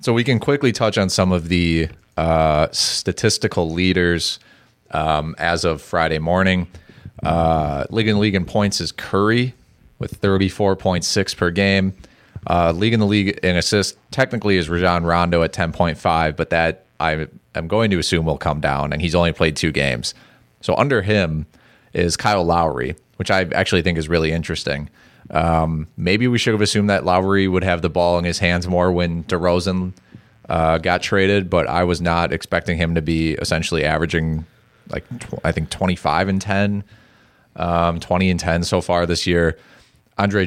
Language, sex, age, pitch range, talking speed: English, male, 30-49, 80-95 Hz, 175 wpm